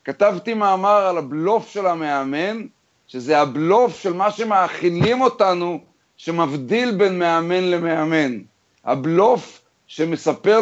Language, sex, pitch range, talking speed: Hebrew, male, 145-195 Hz, 100 wpm